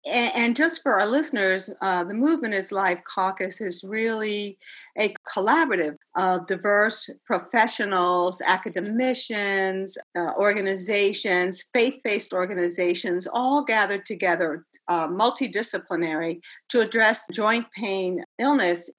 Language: English